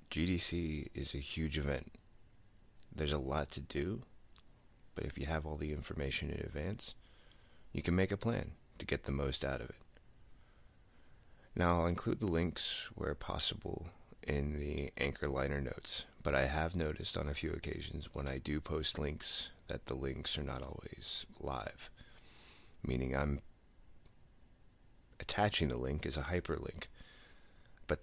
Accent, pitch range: American, 70-90 Hz